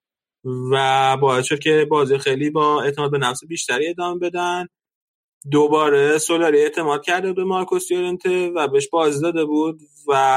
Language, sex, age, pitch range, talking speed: Persian, male, 20-39, 130-180 Hz, 145 wpm